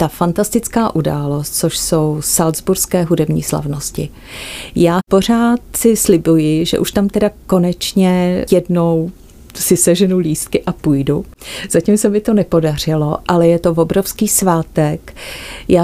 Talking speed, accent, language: 130 wpm, native, Czech